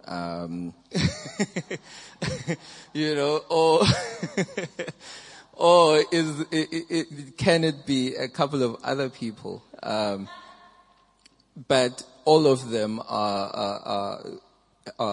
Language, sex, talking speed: English, male, 95 wpm